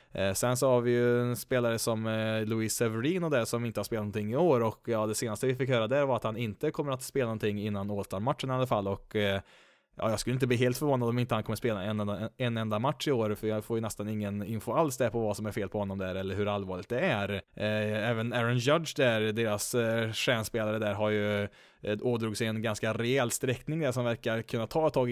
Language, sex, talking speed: Swedish, male, 255 wpm